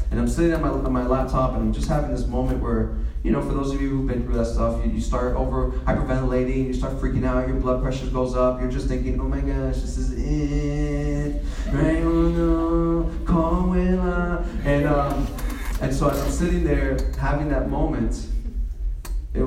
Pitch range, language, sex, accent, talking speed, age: 100-135 Hz, English, male, American, 185 wpm, 20-39